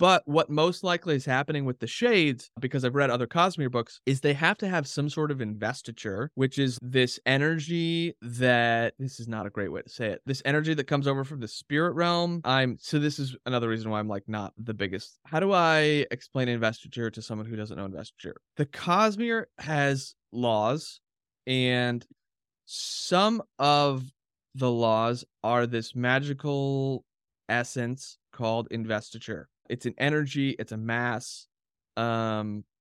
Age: 20-39